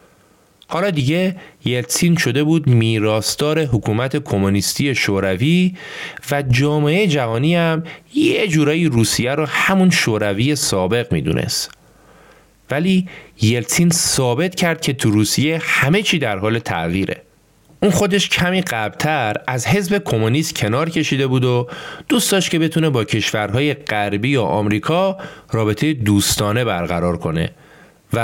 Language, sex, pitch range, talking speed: Persian, male, 110-165 Hz, 125 wpm